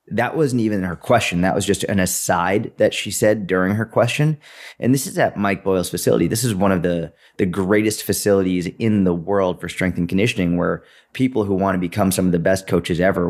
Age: 30-49